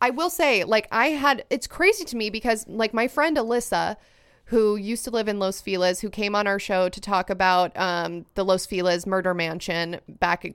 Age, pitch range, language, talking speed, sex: 30-49, 190-230 Hz, English, 215 wpm, female